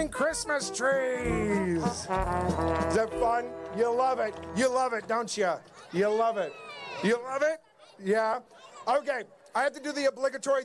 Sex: male